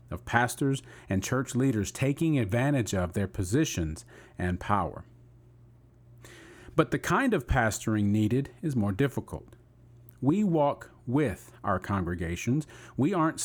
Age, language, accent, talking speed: 40-59, English, American, 125 wpm